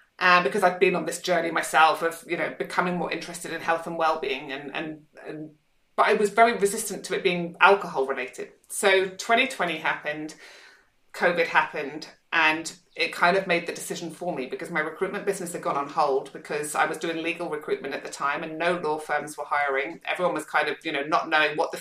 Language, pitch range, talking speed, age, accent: English, 160-190 Hz, 215 wpm, 30-49, British